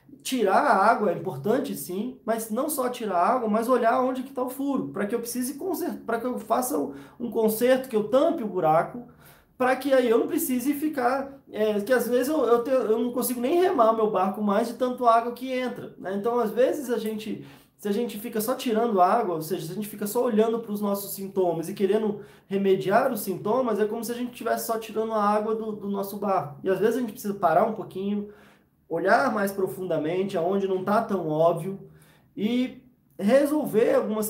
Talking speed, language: 220 wpm, Portuguese